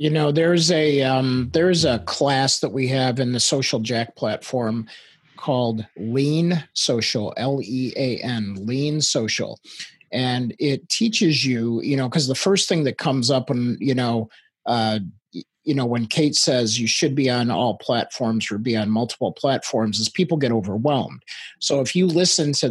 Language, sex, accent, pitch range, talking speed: English, male, American, 115-140 Hz, 170 wpm